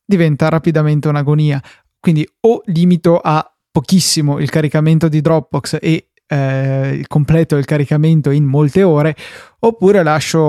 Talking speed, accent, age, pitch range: 125 wpm, native, 20-39, 145-175 Hz